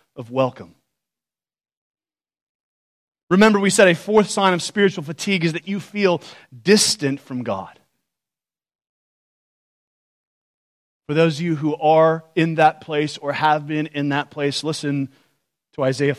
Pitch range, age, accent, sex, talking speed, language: 125-165 Hz, 30-49, American, male, 135 wpm, English